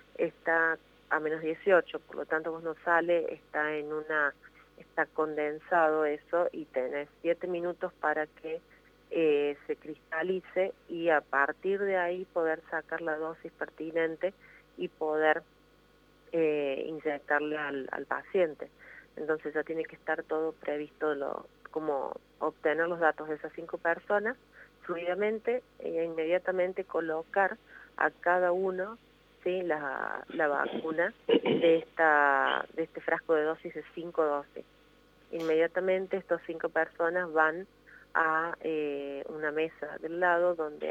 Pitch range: 155-175 Hz